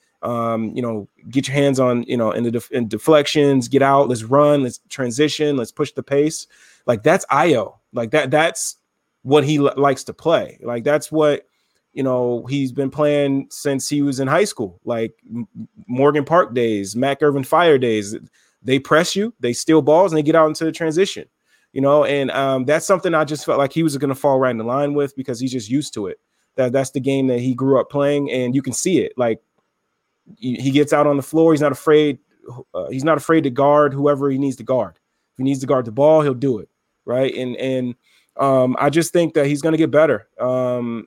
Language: English